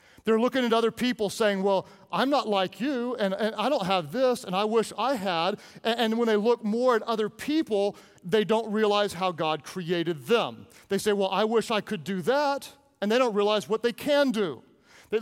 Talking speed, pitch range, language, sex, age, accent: 220 wpm, 185-235 Hz, English, male, 40-59, American